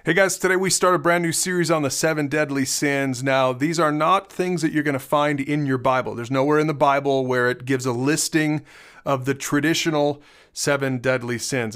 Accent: American